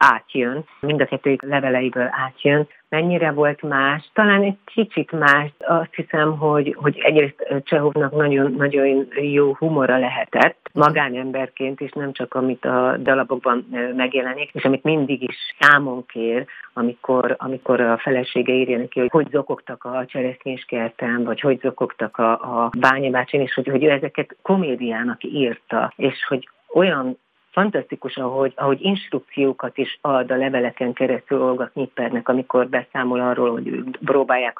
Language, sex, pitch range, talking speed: Hungarian, female, 125-140 Hz, 135 wpm